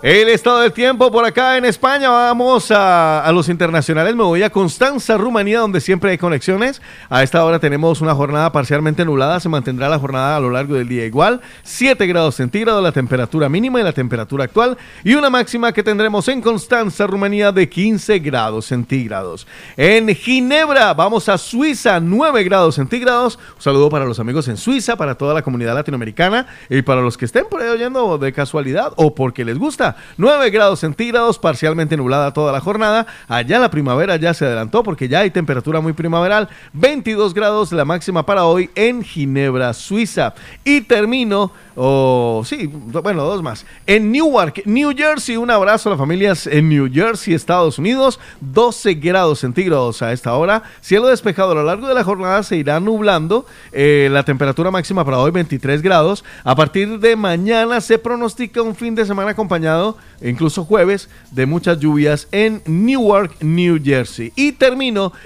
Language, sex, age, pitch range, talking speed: Spanish, male, 40-59, 150-225 Hz, 175 wpm